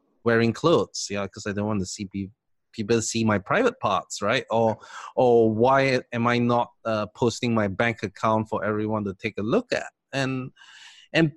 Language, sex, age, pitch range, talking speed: English, male, 20-39, 110-155 Hz, 185 wpm